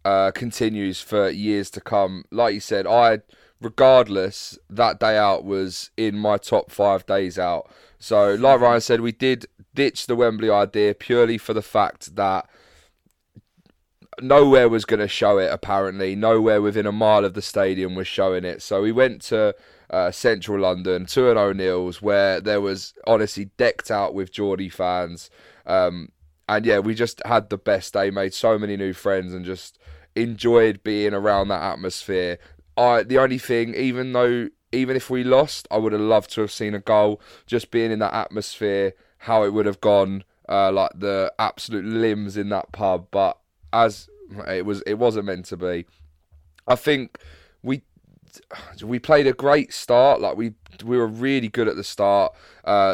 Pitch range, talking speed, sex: 95-115 Hz, 180 wpm, male